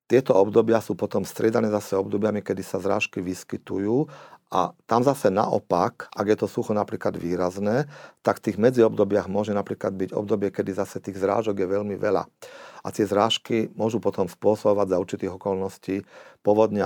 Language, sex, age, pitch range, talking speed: Slovak, male, 40-59, 95-105 Hz, 165 wpm